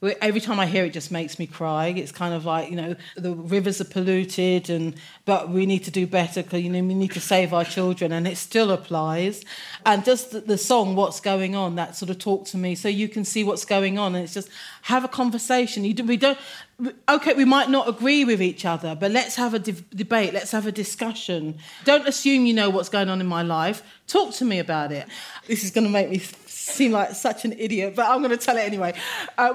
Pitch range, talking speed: 185-255 Hz, 245 wpm